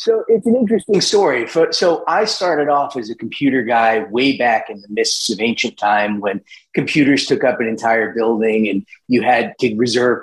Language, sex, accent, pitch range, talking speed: English, male, American, 110-145 Hz, 195 wpm